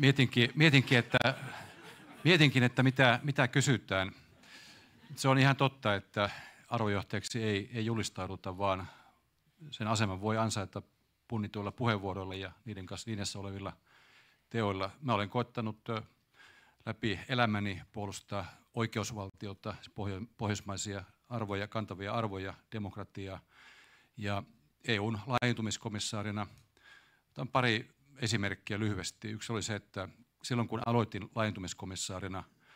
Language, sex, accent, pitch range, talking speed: Finnish, male, native, 100-115 Hz, 105 wpm